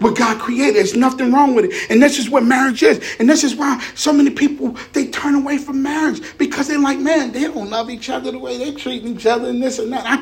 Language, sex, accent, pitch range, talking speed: English, male, American, 210-265 Hz, 265 wpm